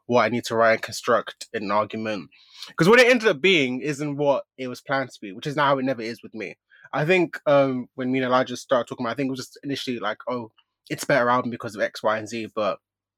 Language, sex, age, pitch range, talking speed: English, male, 20-39, 115-140 Hz, 275 wpm